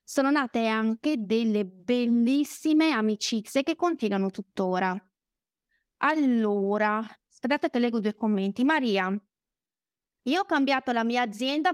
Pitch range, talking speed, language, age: 215-280 Hz, 110 wpm, Italian, 20-39